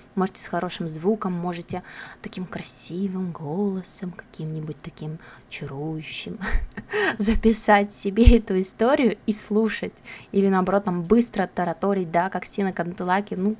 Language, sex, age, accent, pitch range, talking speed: Russian, female, 20-39, native, 180-220 Hz, 120 wpm